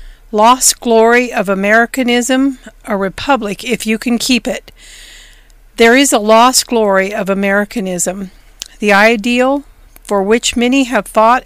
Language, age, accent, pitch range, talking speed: English, 50-69, American, 200-250 Hz, 130 wpm